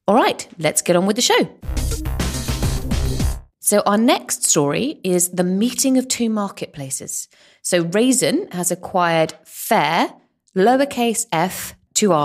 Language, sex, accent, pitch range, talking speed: English, female, British, 150-205 Hz, 125 wpm